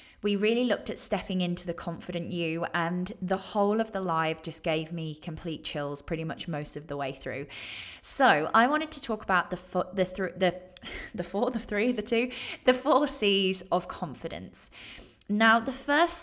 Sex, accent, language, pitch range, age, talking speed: female, British, English, 175-225 Hz, 20-39, 180 wpm